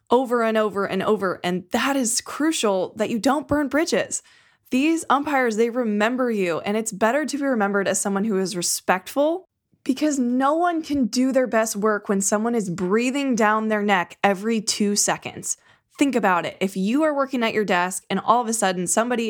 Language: English